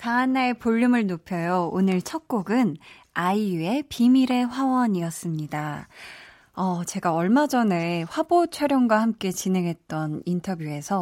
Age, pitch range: 20-39, 175-250 Hz